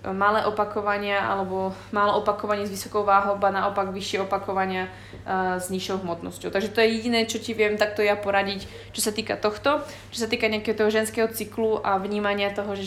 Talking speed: 185 wpm